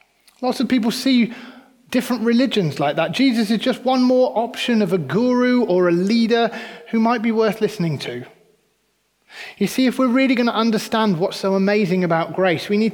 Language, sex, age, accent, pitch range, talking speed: English, male, 30-49, British, 165-230 Hz, 190 wpm